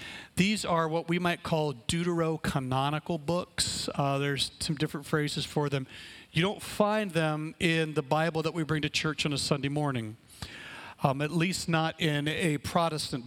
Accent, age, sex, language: American, 40-59, male, English